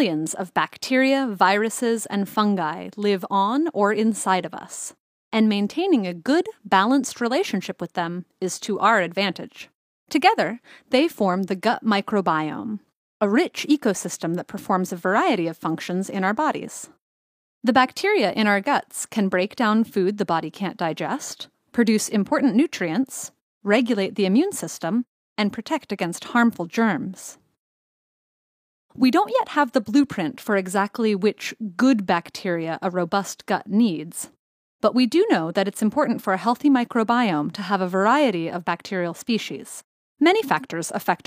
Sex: female